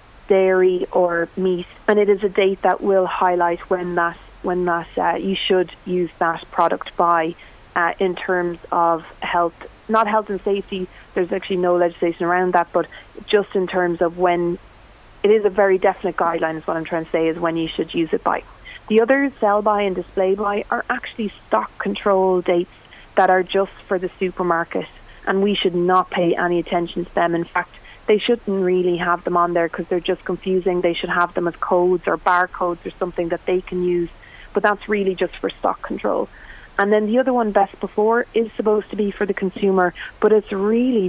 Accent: Irish